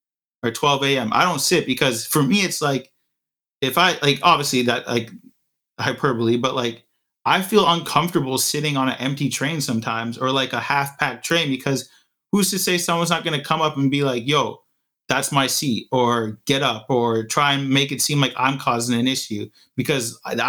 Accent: American